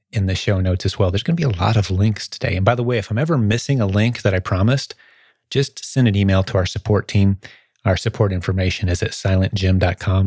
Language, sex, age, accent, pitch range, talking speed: English, male, 30-49, American, 100-115 Hz, 245 wpm